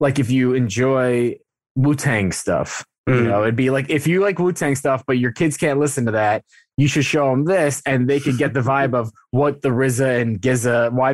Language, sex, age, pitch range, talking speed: English, male, 20-39, 115-140 Hz, 220 wpm